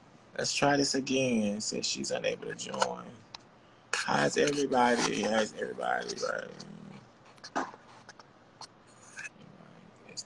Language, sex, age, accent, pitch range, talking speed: English, male, 20-39, American, 105-135 Hz, 90 wpm